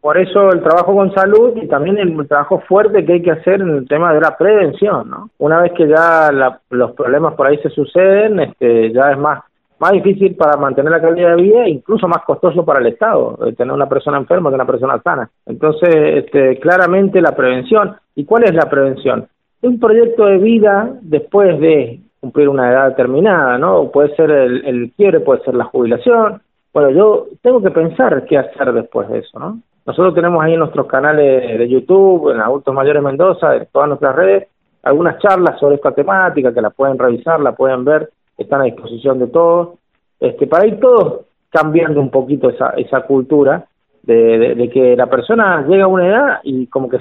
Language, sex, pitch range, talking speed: Spanish, male, 140-195 Hz, 200 wpm